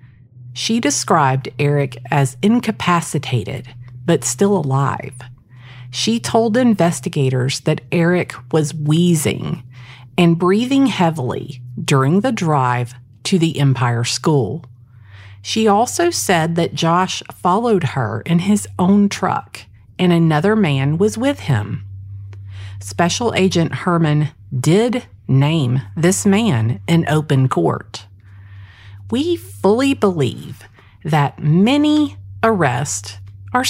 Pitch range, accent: 125-190 Hz, American